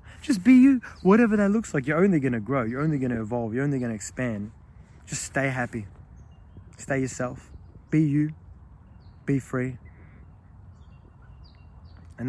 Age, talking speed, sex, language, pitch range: 30-49, 155 wpm, male, English, 90-140 Hz